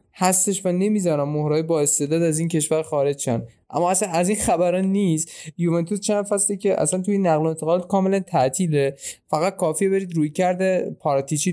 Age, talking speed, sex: 20-39, 170 wpm, male